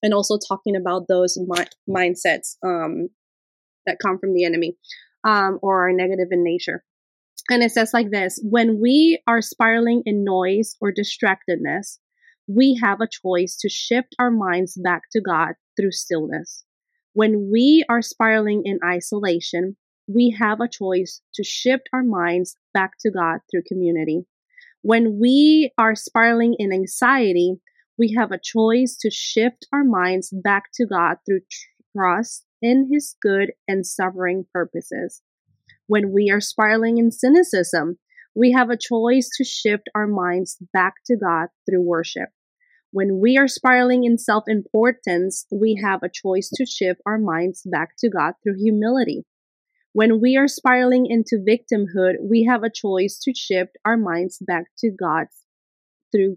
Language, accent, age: English, American, 30-49